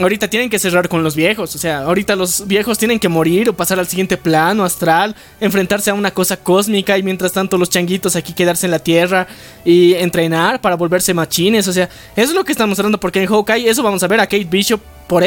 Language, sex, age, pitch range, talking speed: Spanish, male, 20-39, 185-230 Hz, 235 wpm